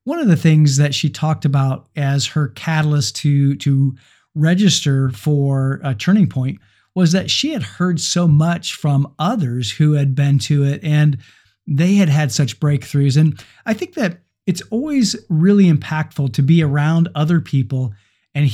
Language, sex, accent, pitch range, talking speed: English, male, American, 140-175 Hz, 170 wpm